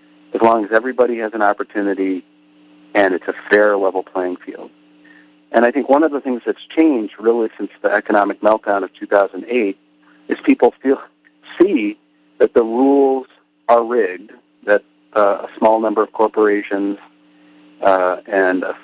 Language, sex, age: English, male, 50-69